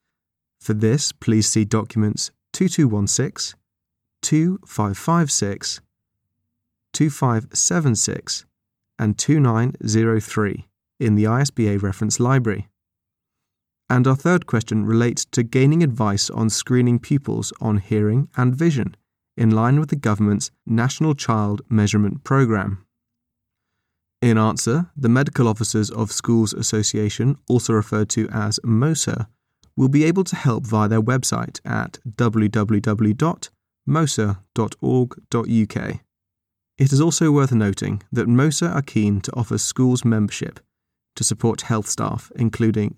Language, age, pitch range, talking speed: English, 30-49, 105-135 Hz, 110 wpm